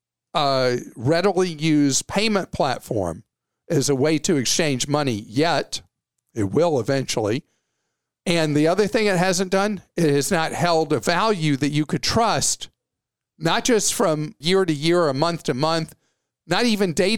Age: 50-69